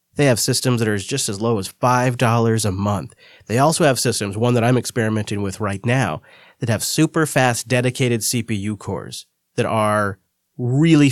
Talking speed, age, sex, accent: 180 wpm, 30-49, male, American